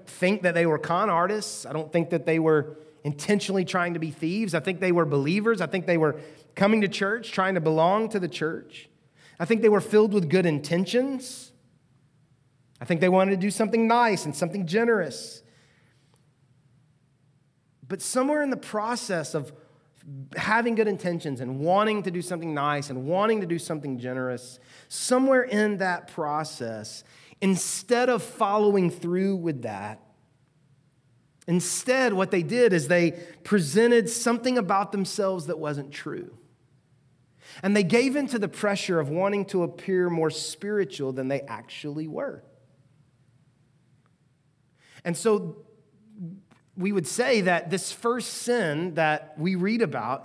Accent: American